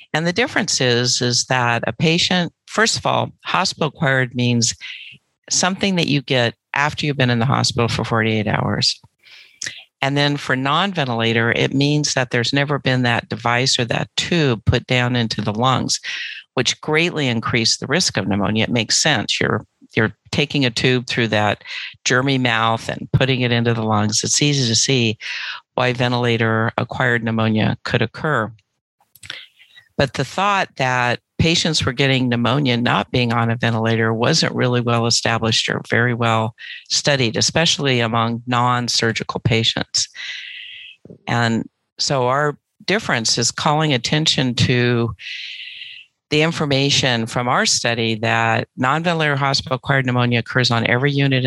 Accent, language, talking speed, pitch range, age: American, English, 150 wpm, 115-145 Hz, 50-69